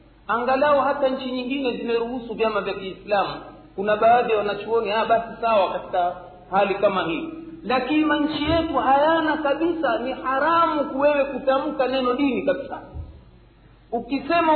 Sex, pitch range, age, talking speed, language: male, 195-280 Hz, 50-69, 130 wpm, Swahili